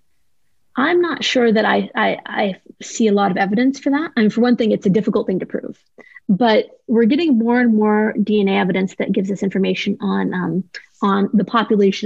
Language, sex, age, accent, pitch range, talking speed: English, female, 30-49, American, 195-235 Hz, 215 wpm